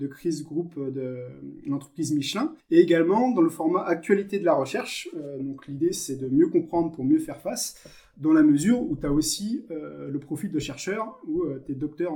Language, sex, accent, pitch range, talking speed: French, male, French, 145-200 Hz, 200 wpm